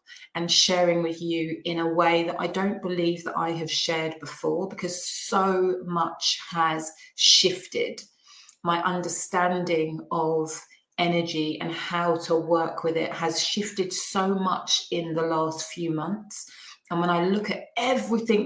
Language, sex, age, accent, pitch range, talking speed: English, female, 30-49, British, 165-195 Hz, 150 wpm